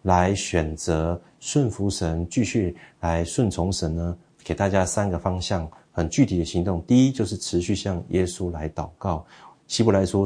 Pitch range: 85-105 Hz